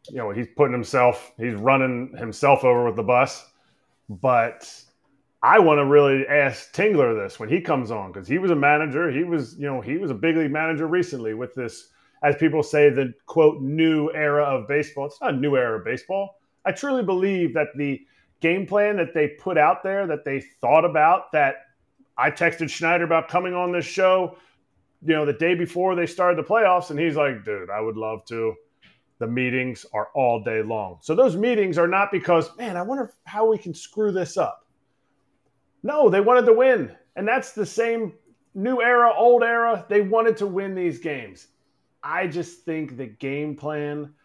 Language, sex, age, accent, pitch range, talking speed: English, male, 30-49, American, 140-185 Hz, 200 wpm